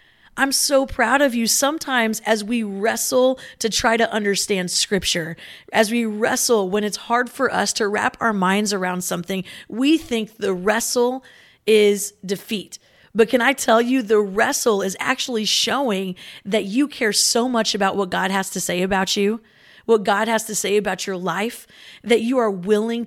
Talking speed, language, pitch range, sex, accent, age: 180 wpm, English, 200-245 Hz, female, American, 30-49